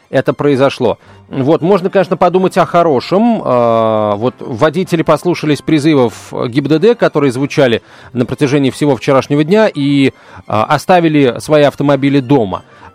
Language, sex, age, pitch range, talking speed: Russian, male, 30-49, 125-170 Hz, 120 wpm